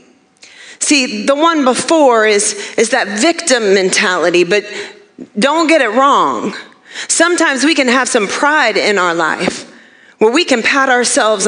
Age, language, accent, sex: 40-59, English, American, female